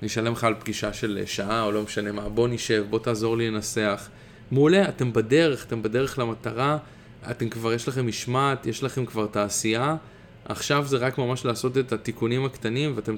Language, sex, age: Hebrew, male, 20-39